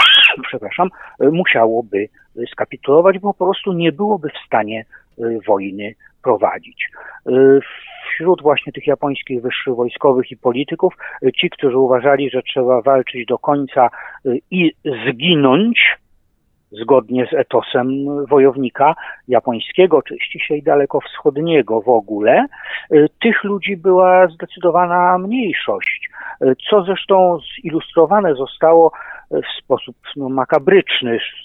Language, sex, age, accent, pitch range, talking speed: Polish, male, 50-69, native, 130-185 Hz, 100 wpm